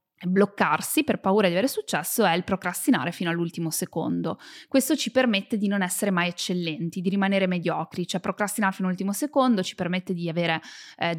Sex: female